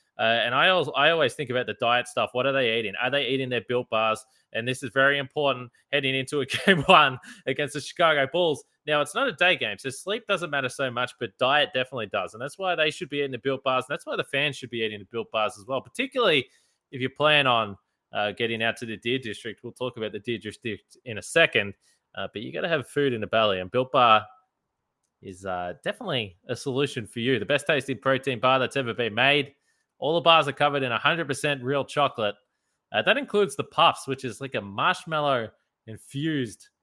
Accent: Australian